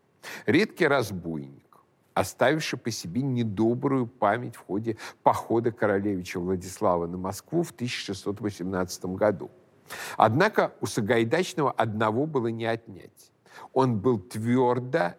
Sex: male